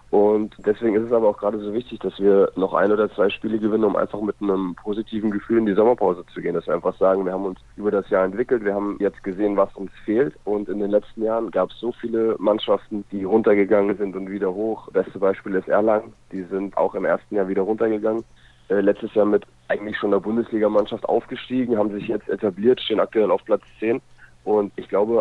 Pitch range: 100-110 Hz